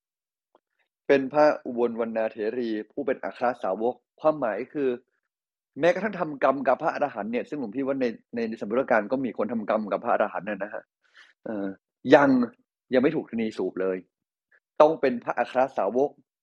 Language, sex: Thai, male